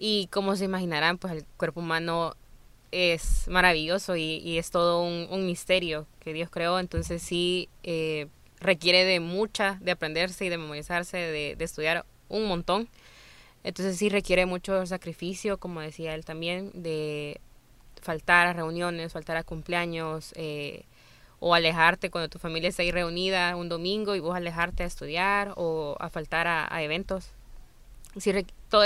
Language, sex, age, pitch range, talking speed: Spanish, female, 10-29, 165-190 Hz, 160 wpm